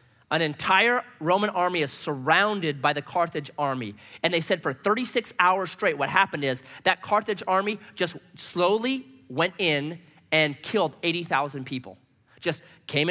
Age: 30-49